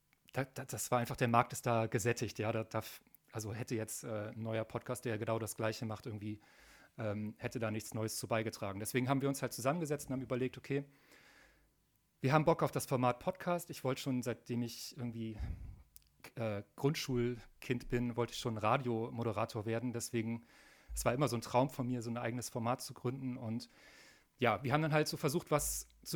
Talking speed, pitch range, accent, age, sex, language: 195 wpm, 115-135 Hz, German, 40-59, male, German